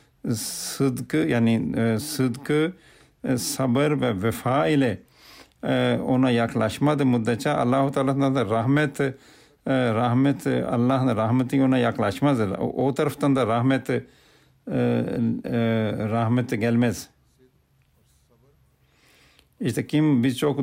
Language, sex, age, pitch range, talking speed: Turkish, male, 50-69, 120-140 Hz, 95 wpm